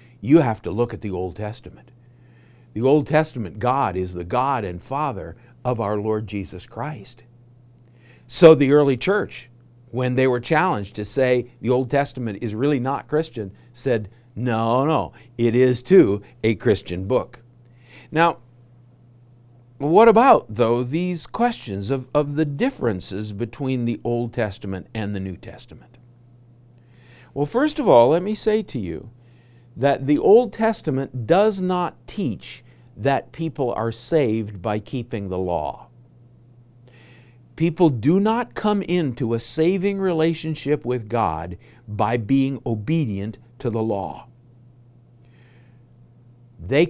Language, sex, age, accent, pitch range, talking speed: English, male, 50-69, American, 115-140 Hz, 135 wpm